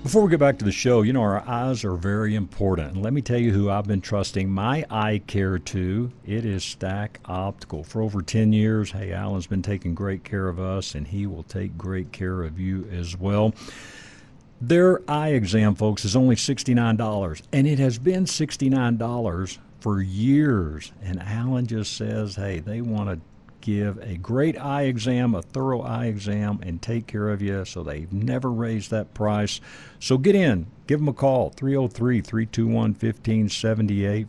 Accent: American